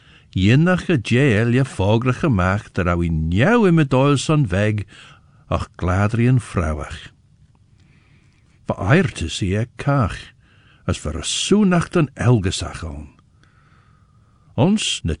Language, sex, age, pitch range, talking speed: English, male, 60-79, 95-130 Hz, 115 wpm